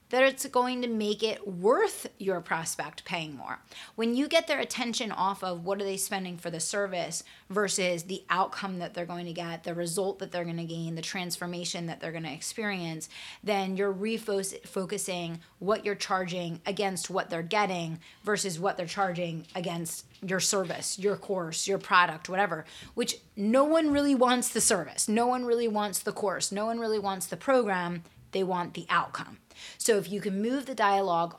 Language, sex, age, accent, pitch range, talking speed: English, female, 30-49, American, 175-220 Hz, 185 wpm